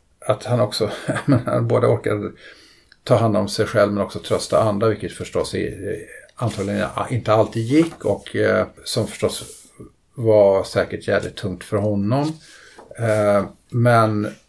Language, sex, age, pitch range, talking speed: Swedish, male, 50-69, 105-125 Hz, 135 wpm